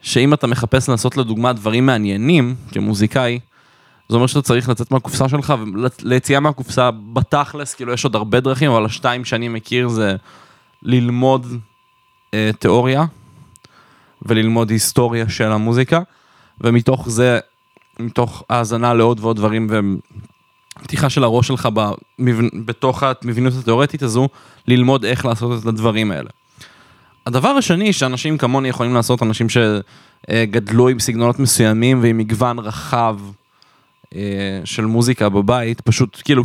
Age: 20-39